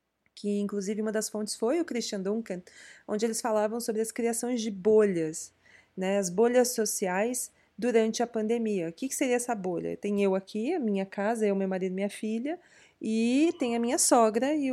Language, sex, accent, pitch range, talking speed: Portuguese, female, Brazilian, 200-245 Hz, 190 wpm